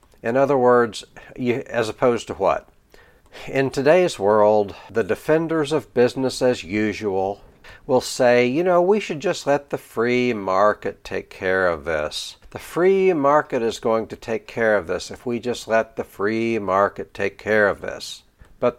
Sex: male